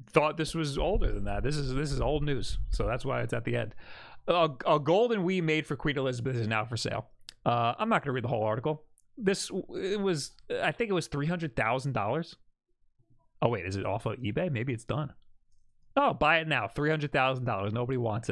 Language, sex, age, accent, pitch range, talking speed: English, male, 30-49, American, 120-160 Hz, 215 wpm